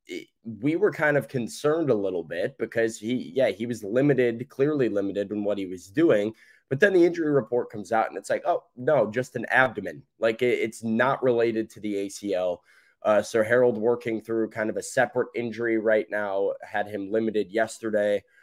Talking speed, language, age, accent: 190 wpm, English, 20-39, American